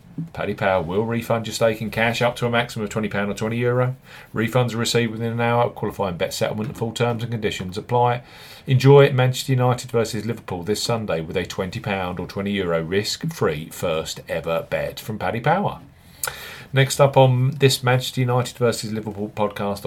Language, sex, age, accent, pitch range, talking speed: English, male, 40-59, British, 100-125 Hz, 180 wpm